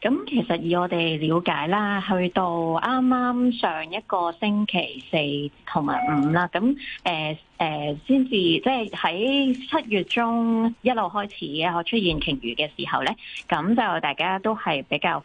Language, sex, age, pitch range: Chinese, female, 20-39, 160-225 Hz